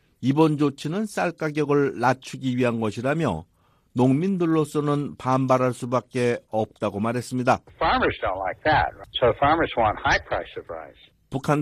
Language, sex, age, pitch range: Korean, male, 60-79, 120-150 Hz